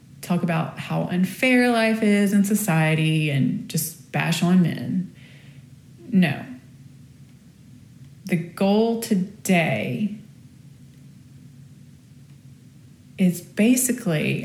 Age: 30-49